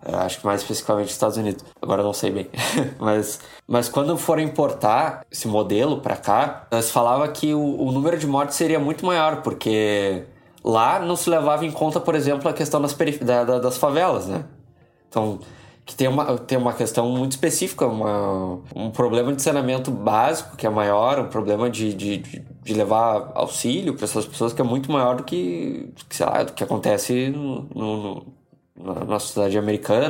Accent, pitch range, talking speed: Brazilian, 110-155 Hz, 190 wpm